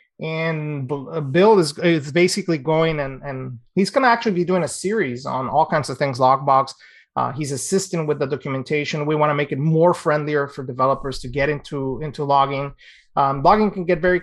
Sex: male